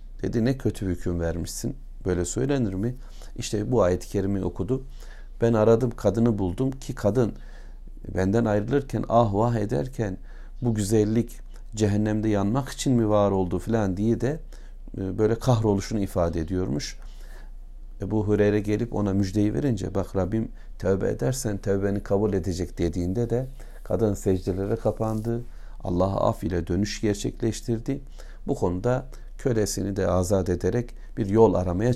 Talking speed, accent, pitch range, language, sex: 135 wpm, native, 90-115 Hz, Turkish, male